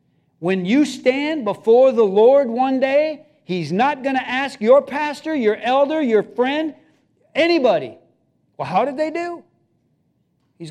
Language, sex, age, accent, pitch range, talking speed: English, male, 50-69, American, 180-265 Hz, 145 wpm